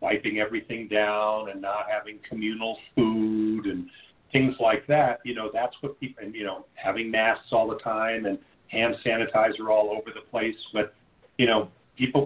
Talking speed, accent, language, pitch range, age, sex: 170 wpm, American, English, 105-145 Hz, 40-59, male